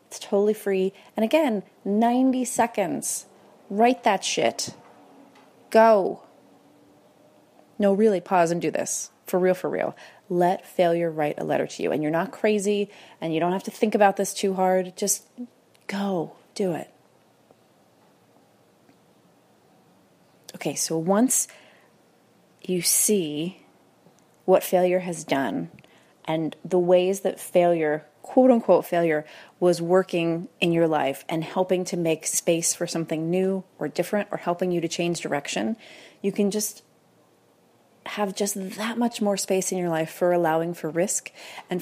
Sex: female